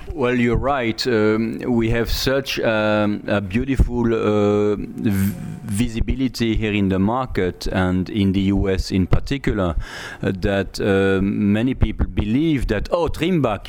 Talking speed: 140 wpm